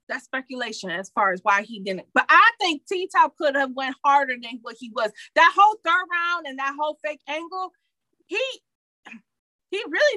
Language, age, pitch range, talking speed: English, 30-49, 225-335 Hz, 190 wpm